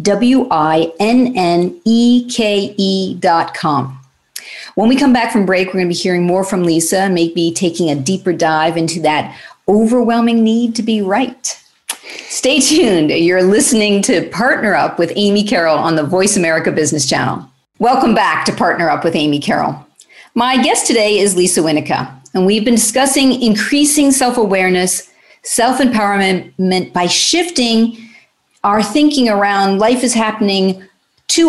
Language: English